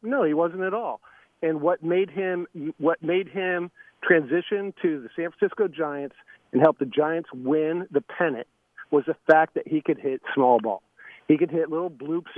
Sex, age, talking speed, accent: male, 50-69, 190 wpm, American